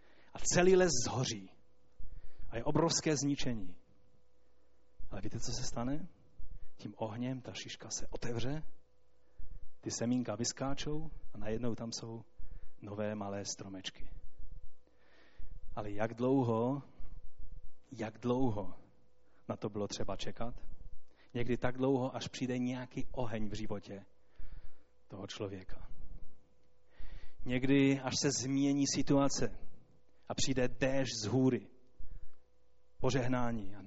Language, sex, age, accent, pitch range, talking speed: Czech, male, 30-49, native, 105-135 Hz, 110 wpm